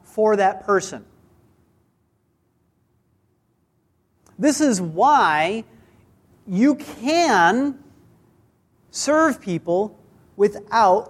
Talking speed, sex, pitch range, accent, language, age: 60 wpm, male, 190-280 Hz, American, English, 40-59